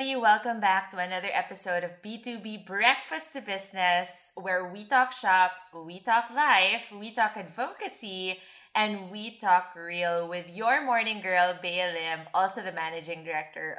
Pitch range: 175-235 Hz